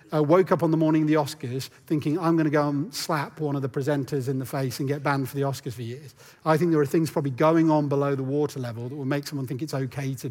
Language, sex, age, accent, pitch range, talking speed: English, male, 40-59, British, 145-190 Hz, 295 wpm